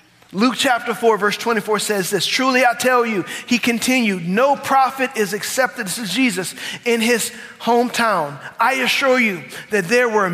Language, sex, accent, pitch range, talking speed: English, male, American, 155-215 Hz, 165 wpm